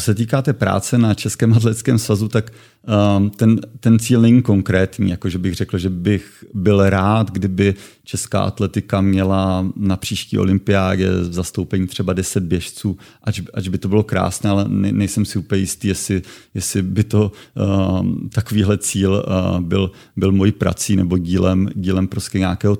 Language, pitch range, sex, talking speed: Czech, 95-105 Hz, male, 165 wpm